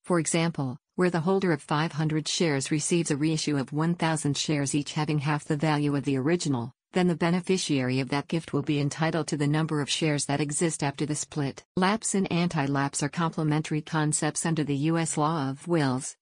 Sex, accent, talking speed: female, American, 195 wpm